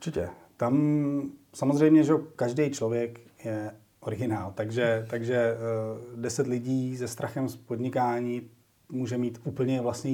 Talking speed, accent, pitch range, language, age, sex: 110 wpm, native, 120-145 Hz, Czech, 30-49, male